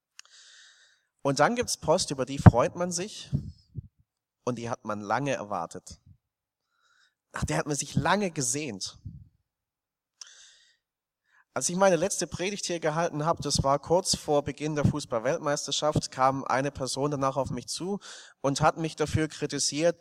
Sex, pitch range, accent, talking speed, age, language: male, 130-165 Hz, German, 150 wpm, 30-49, German